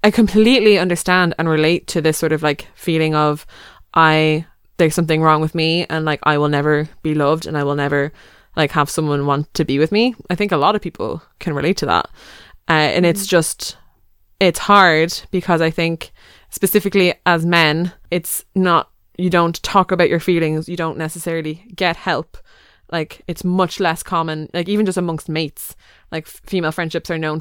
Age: 20-39